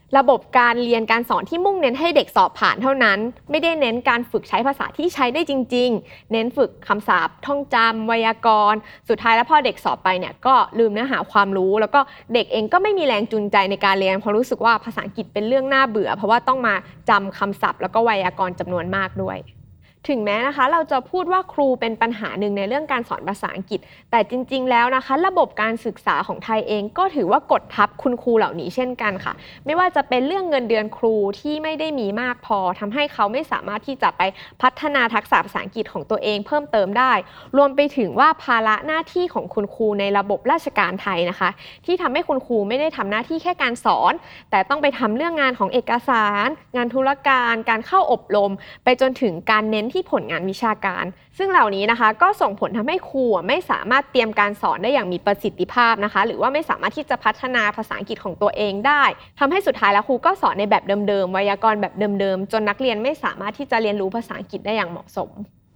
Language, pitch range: English, 205-275 Hz